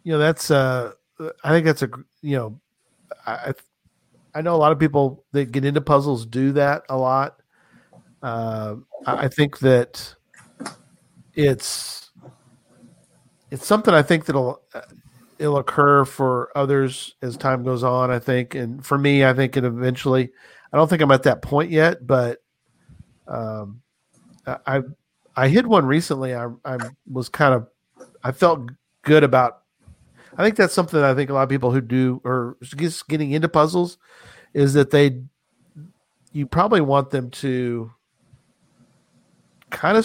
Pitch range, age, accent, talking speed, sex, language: 125-150 Hz, 40-59, American, 155 wpm, male, English